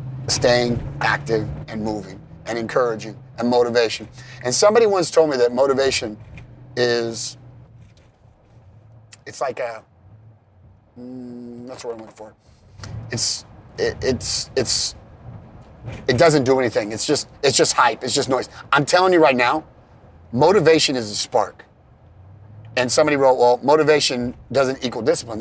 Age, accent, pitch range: 30-49, American, 110-140 Hz